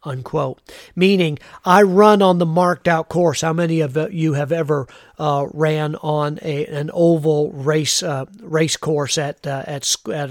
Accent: American